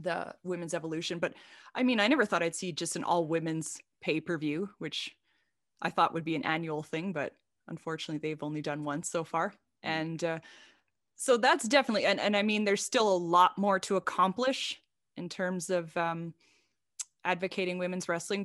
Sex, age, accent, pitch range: female, 20-39, American, 175-225 Hz